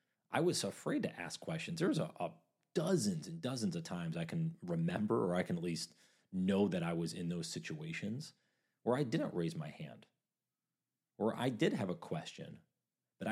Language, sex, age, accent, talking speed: English, male, 30-49, American, 190 wpm